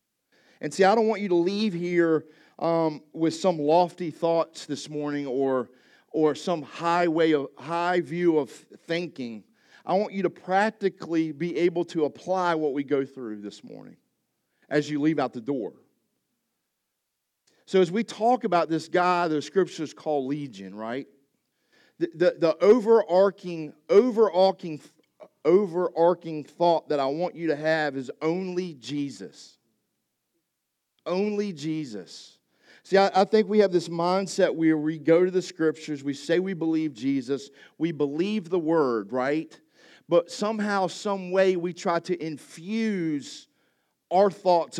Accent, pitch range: American, 150-185 Hz